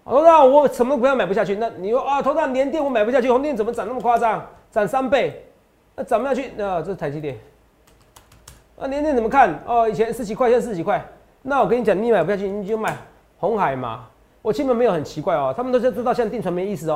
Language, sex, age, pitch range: Chinese, male, 30-49, 160-250 Hz